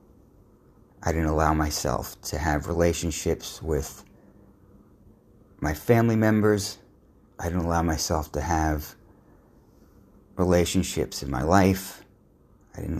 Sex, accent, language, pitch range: male, American, English, 85-100 Hz